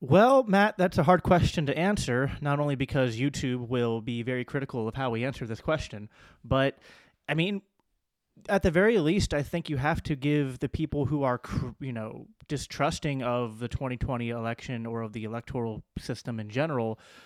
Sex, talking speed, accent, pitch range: male, 185 wpm, American, 115-145 Hz